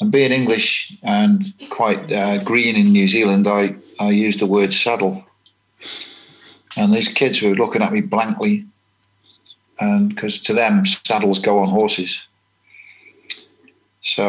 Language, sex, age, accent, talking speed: English, male, 40-59, British, 135 wpm